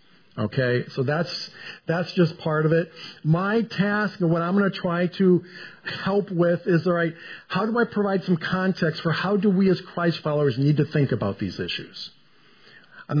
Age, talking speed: 50-69, 190 wpm